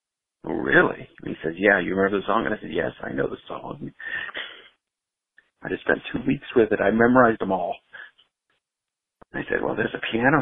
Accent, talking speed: American, 205 wpm